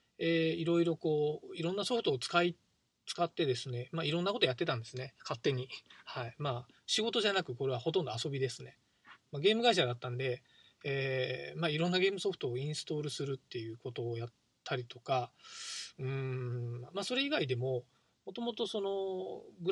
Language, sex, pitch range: Japanese, male, 125-170 Hz